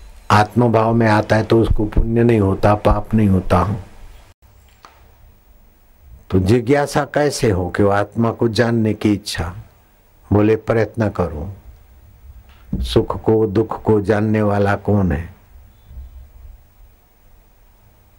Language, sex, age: Hindi, male, 60-79